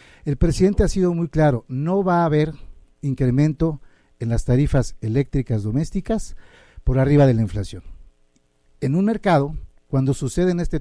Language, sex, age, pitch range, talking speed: Spanish, male, 50-69, 120-160 Hz, 150 wpm